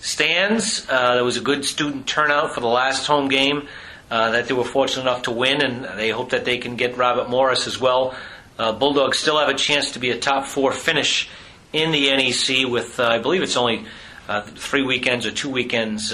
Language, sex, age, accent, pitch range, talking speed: English, male, 40-59, American, 115-135 Hz, 215 wpm